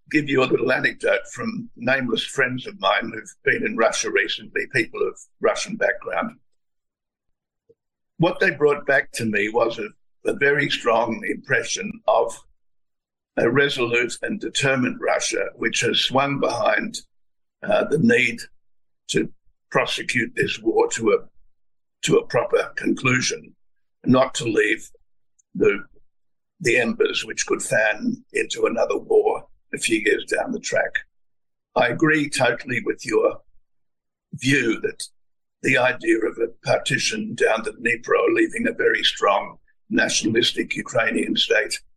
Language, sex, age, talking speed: English, male, 60-79, 135 wpm